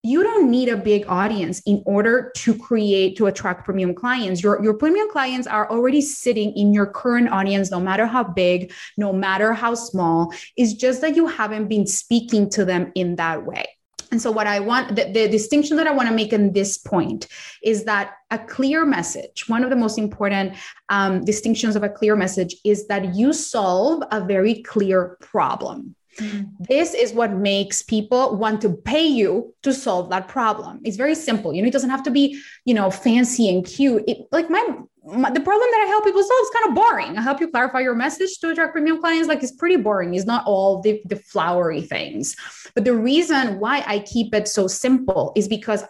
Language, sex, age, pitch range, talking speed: English, female, 20-39, 200-270 Hz, 210 wpm